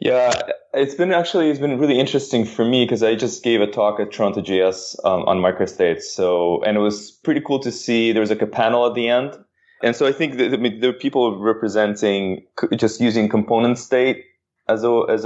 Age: 20-39